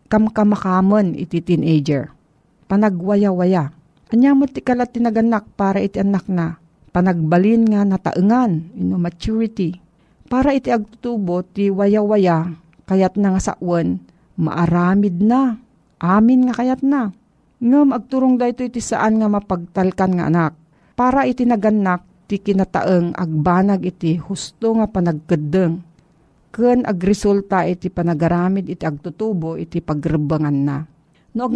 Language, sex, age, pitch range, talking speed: Filipino, female, 50-69, 170-220 Hz, 120 wpm